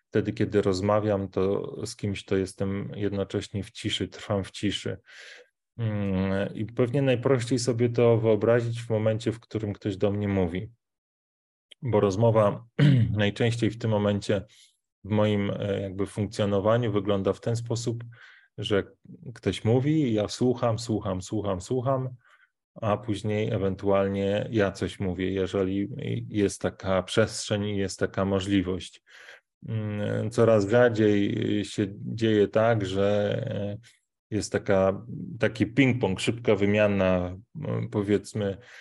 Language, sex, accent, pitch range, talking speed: Polish, male, native, 100-115 Hz, 120 wpm